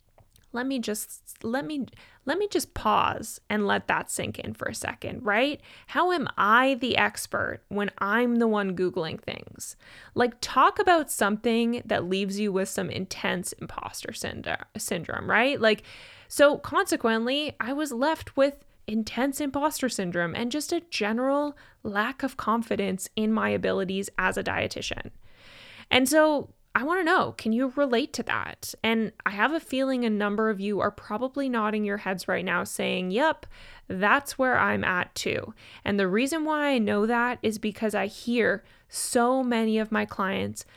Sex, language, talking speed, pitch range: female, English, 170 wpm, 205-275 Hz